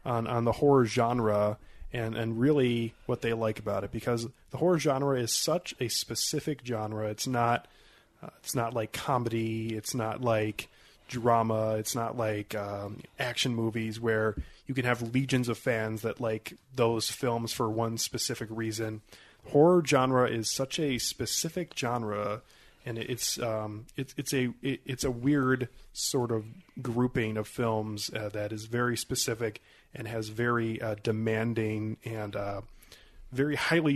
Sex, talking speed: male, 160 wpm